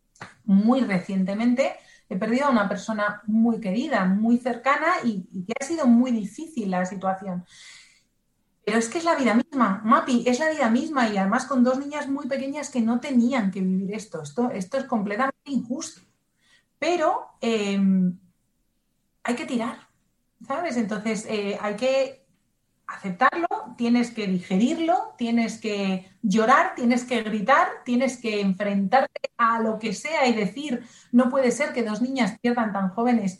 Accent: Spanish